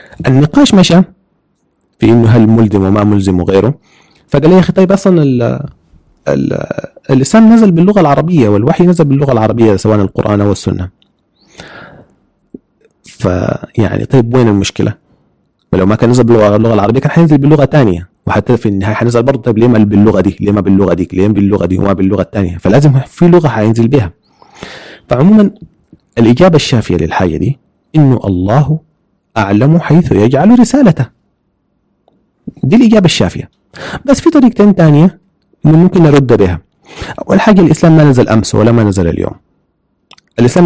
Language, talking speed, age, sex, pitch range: Arabic, 150 wpm, 30-49, male, 105-160 Hz